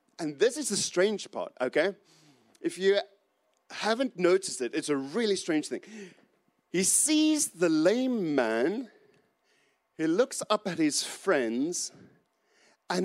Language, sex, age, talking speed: English, male, 40-59, 135 wpm